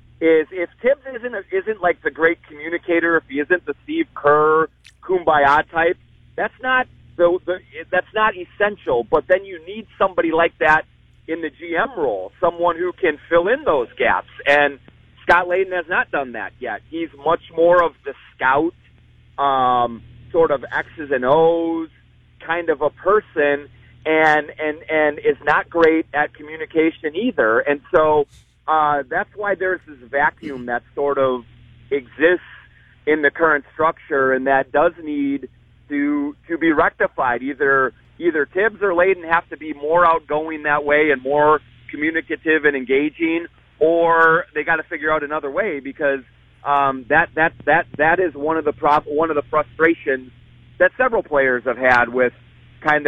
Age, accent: 40-59, American